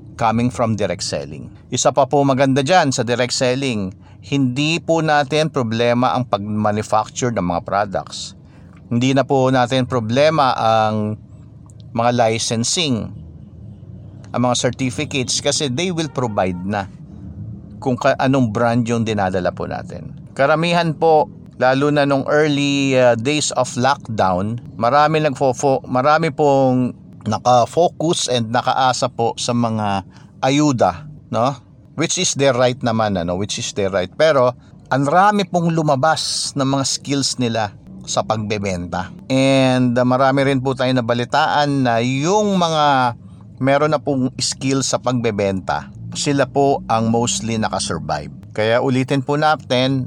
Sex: male